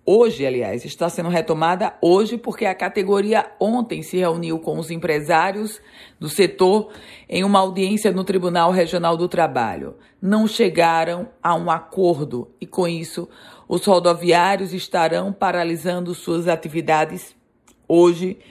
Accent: Brazilian